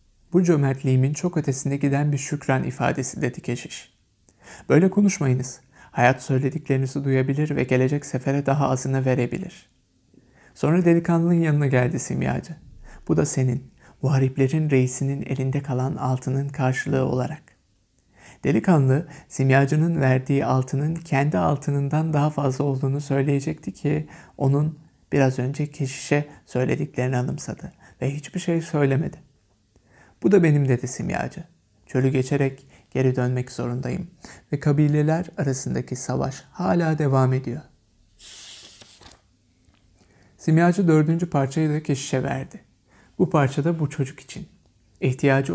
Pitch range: 130-155 Hz